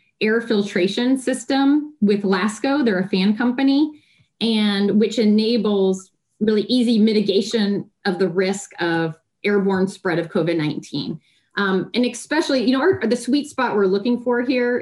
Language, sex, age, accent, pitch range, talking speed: English, female, 30-49, American, 195-255 Hz, 145 wpm